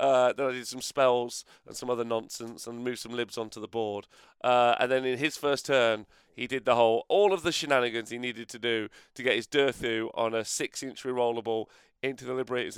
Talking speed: 225 wpm